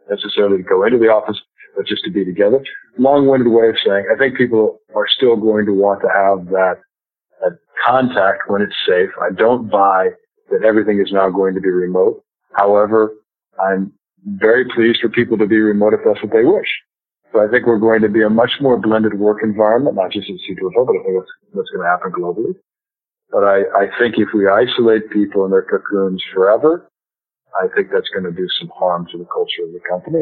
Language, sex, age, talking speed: English, male, 50-69, 210 wpm